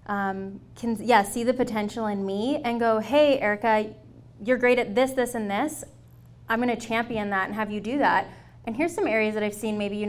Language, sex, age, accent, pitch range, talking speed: English, female, 20-39, American, 200-240 Hz, 220 wpm